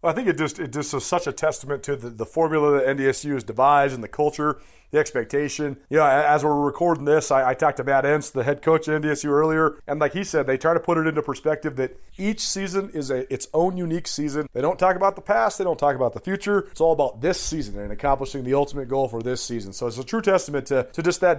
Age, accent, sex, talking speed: 30-49, American, male, 270 wpm